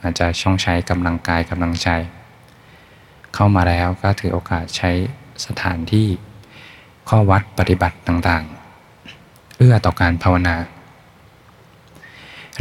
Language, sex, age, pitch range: Thai, male, 20-39, 90-100 Hz